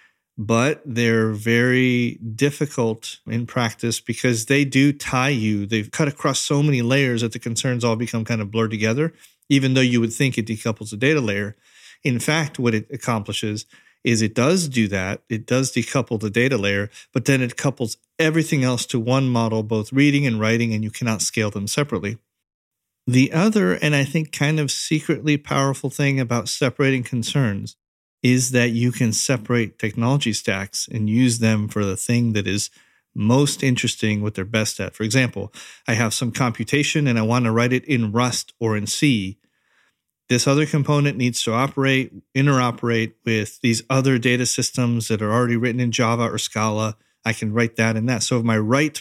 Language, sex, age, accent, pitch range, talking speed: English, male, 40-59, American, 110-135 Hz, 185 wpm